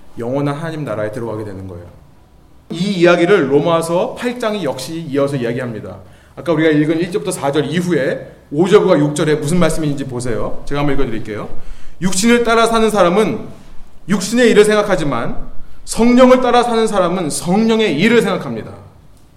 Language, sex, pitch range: Korean, male, 150-235 Hz